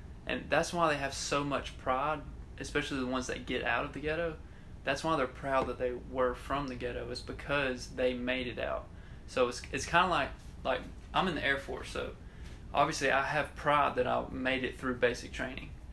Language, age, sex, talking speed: English, 20-39, male, 215 wpm